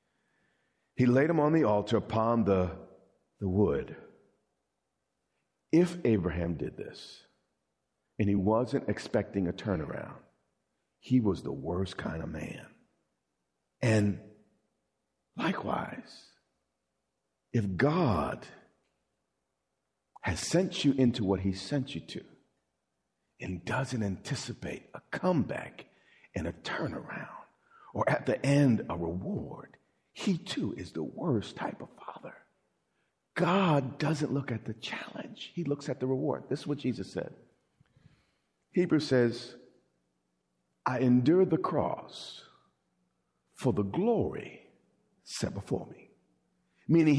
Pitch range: 90-145 Hz